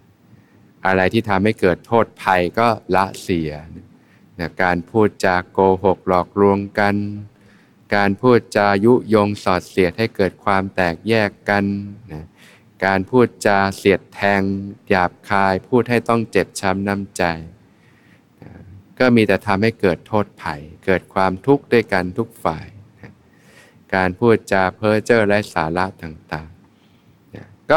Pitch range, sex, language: 90-105 Hz, male, Thai